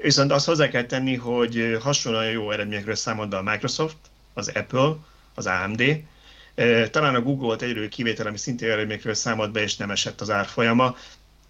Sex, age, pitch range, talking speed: male, 30-49, 105-130 Hz, 165 wpm